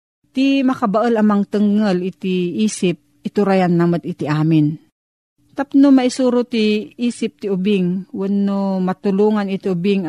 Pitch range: 165-205 Hz